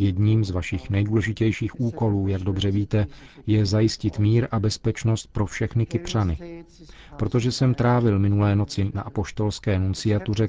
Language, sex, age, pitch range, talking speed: Czech, male, 40-59, 95-115 Hz, 135 wpm